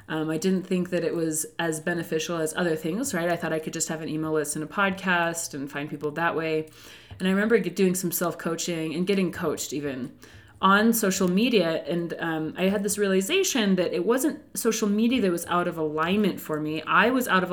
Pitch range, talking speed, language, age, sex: 160-205 Hz, 225 wpm, English, 30-49, female